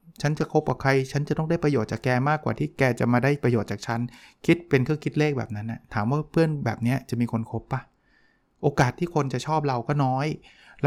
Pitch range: 120-155 Hz